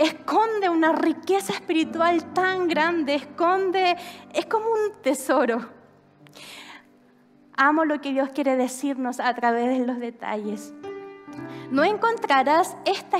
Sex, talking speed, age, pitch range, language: female, 115 wpm, 20-39, 255-340 Hz, Spanish